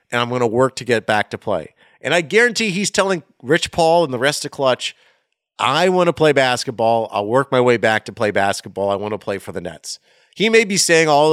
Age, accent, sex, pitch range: 40-59, American, male, 120-160 Hz